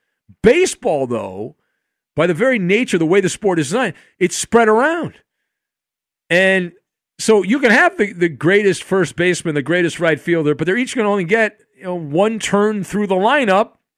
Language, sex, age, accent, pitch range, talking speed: English, male, 50-69, American, 140-210 Hz, 190 wpm